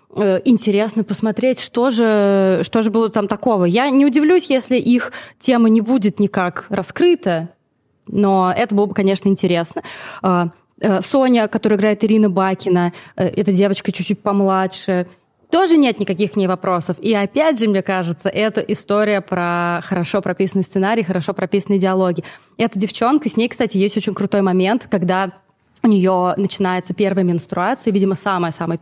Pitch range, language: 185-235 Hz, Russian